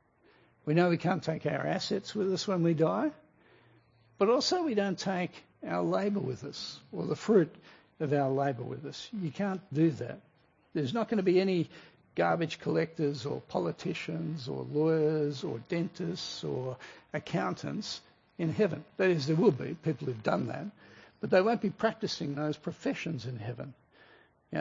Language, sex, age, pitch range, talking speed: English, male, 60-79, 150-200 Hz, 170 wpm